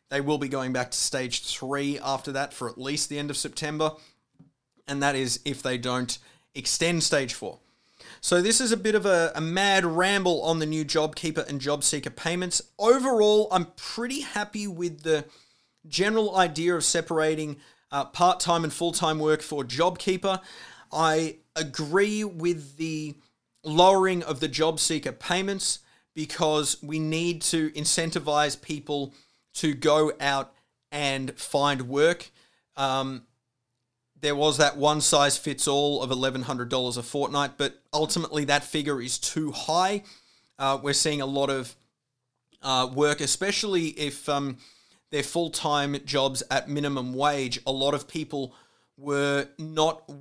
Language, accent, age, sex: English, Australian, 30-49, male